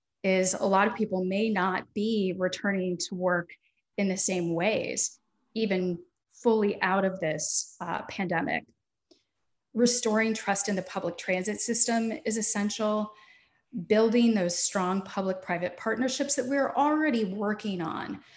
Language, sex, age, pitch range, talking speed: English, female, 30-49, 185-225 Hz, 135 wpm